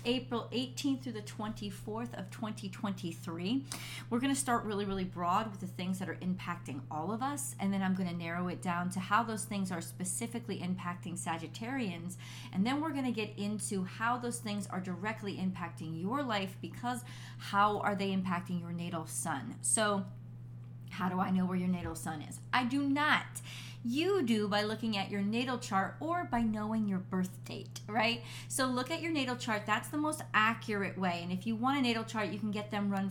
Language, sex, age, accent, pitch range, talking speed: English, female, 30-49, American, 160-210 Hz, 205 wpm